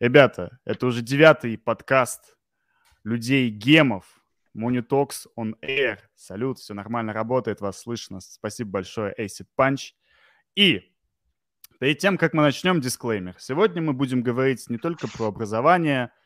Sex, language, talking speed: male, Russian, 125 wpm